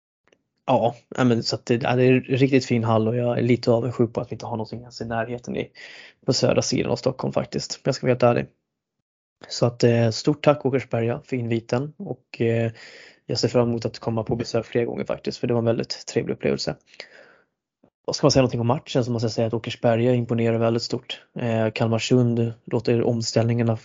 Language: Swedish